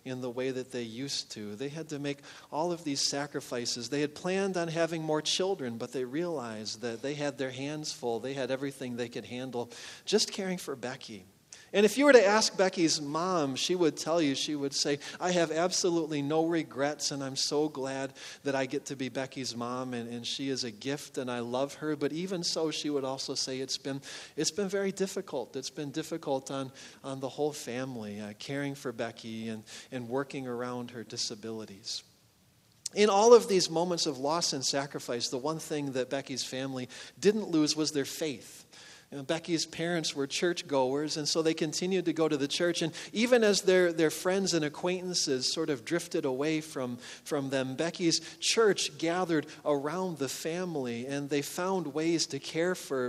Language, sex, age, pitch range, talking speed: English, male, 40-59, 135-170 Hz, 200 wpm